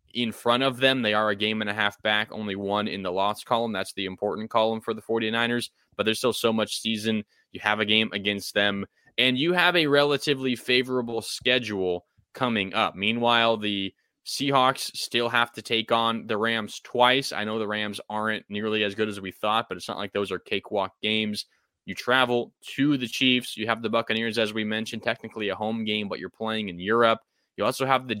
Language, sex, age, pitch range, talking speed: English, male, 20-39, 105-125 Hz, 215 wpm